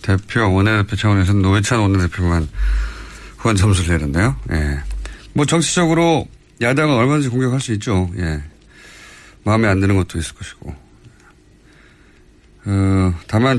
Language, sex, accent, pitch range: Korean, male, native, 95-150 Hz